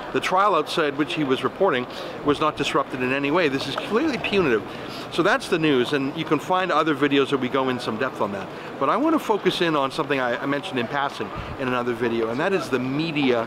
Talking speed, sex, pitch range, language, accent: 245 wpm, male, 130-165 Hz, English, American